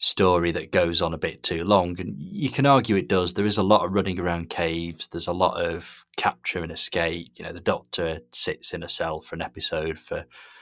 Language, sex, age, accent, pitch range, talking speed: English, male, 30-49, British, 85-105 Hz, 230 wpm